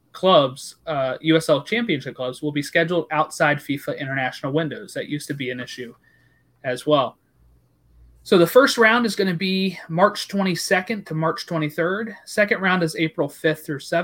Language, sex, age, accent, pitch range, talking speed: English, male, 30-49, American, 140-175 Hz, 165 wpm